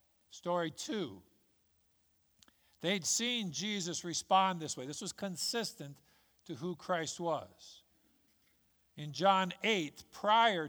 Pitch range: 115-185 Hz